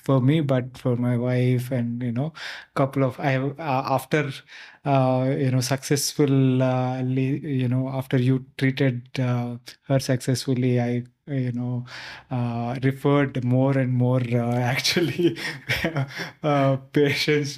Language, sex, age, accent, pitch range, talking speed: English, male, 20-39, Indian, 120-140 Hz, 140 wpm